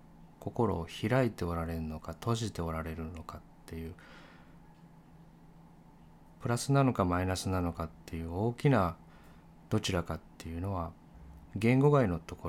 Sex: male